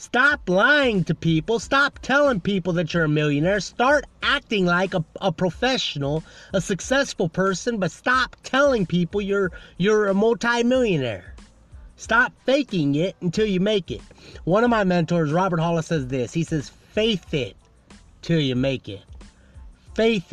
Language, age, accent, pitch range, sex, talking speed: English, 30-49, American, 165-240 Hz, male, 155 wpm